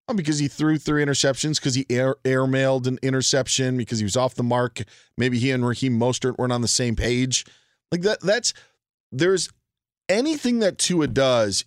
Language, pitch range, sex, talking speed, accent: English, 110-150 Hz, male, 185 wpm, American